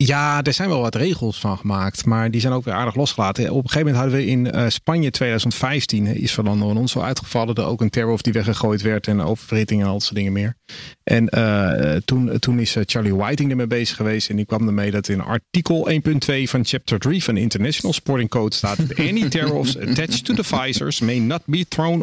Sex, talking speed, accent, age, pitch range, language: male, 220 wpm, Dutch, 40-59, 110-130 Hz, Dutch